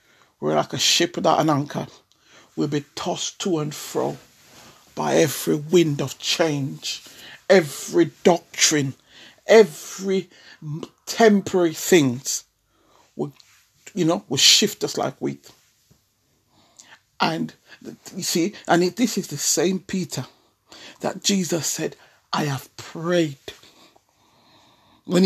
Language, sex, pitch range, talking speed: English, male, 120-185 Hz, 110 wpm